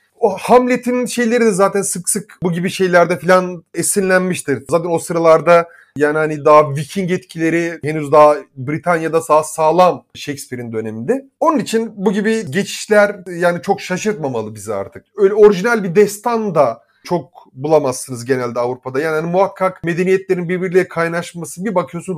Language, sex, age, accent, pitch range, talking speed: Turkish, male, 30-49, native, 150-200 Hz, 145 wpm